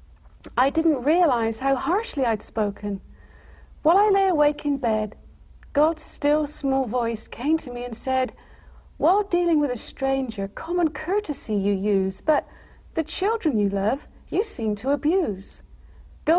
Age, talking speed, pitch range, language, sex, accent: 50-69, 150 wpm, 220-325 Hz, English, female, British